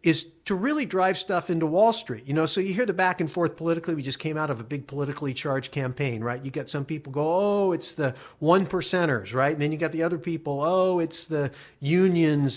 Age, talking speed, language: 50-69, 245 wpm, English